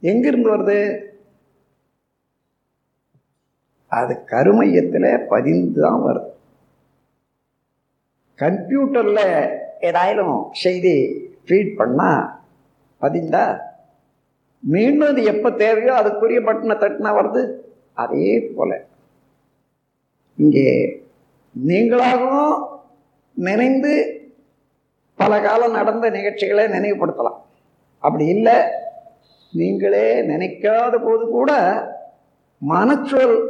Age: 50-69